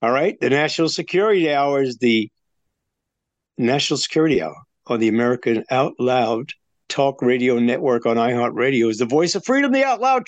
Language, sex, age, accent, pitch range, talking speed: English, male, 50-69, American, 120-155 Hz, 170 wpm